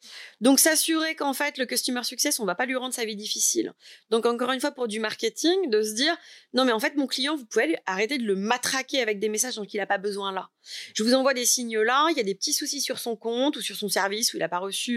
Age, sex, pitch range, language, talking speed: 30-49, female, 210-285 Hz, French, 285 wpm